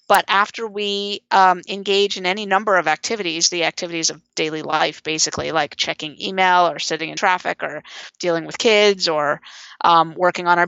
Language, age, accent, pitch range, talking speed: English, 30-49, American, 165-190 Hz, 180 wpm